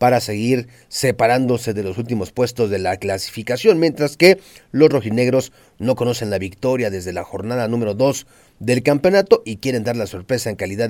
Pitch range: 105-130 Hz